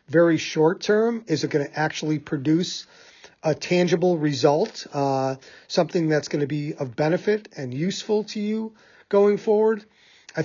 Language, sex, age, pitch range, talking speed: English, male, 40-59, 135-165 Hz, 155 wpm